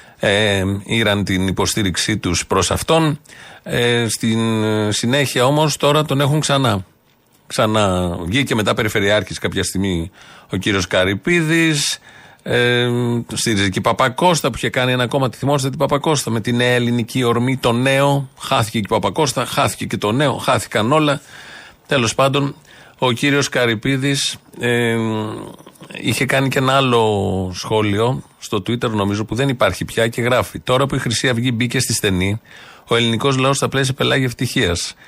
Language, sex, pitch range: Greek, male, 110-145 Hz